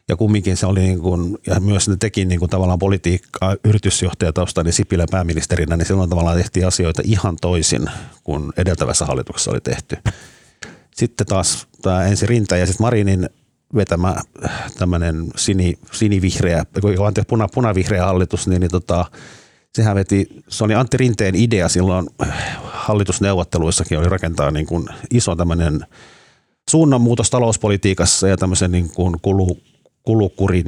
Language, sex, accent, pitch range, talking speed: Finnish, male, native, 85-100 Hz, 135 wpm